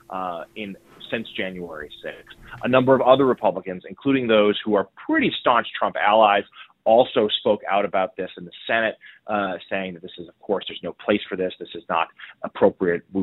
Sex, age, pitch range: male, 30-49, 105-140 Hz